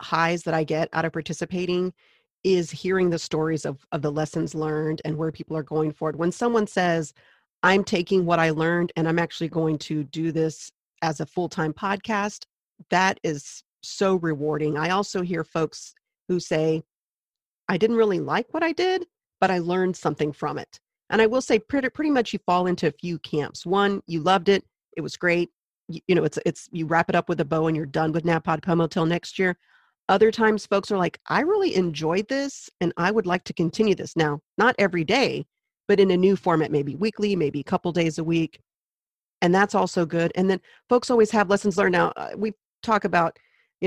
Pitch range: 165-200 Hz